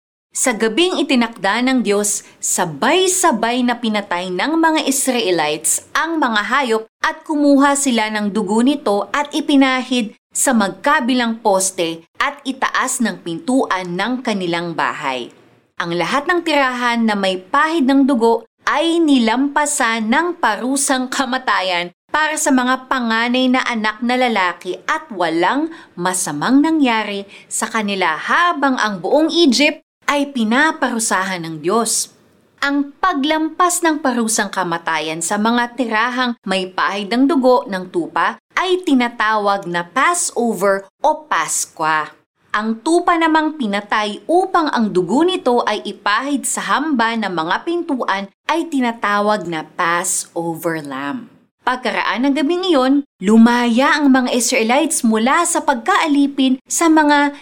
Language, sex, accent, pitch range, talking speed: Filipino, female, native, 200-285 Hz, 125 wpm